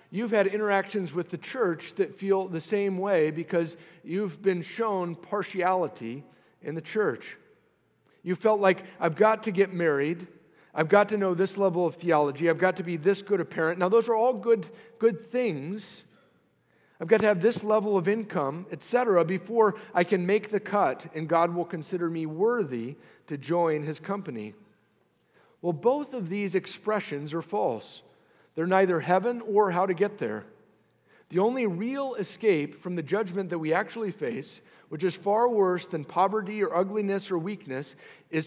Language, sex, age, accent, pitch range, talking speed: English, male, 50-69, American, 170-210 Hz, 175 wpm